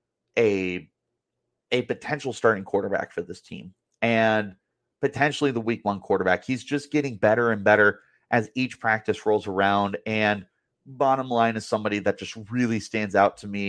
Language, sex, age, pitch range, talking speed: English, male, 30-49, 105-135 Hz, 160 wpm